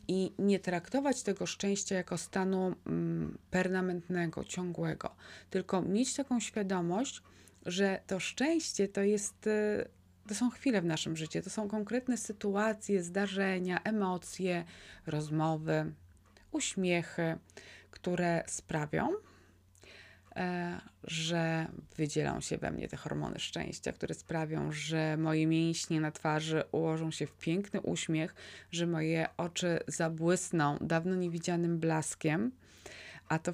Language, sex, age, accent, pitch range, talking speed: Polish, female, 20-39, native, 160-185 Hz, 115 wpm